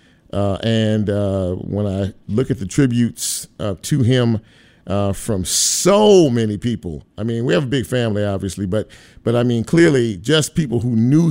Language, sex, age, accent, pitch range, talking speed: English, male, 50-69, American, 105-155 Hz, 180 wpm